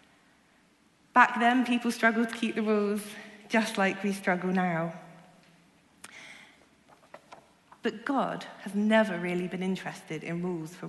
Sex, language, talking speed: female, English, 125 wpm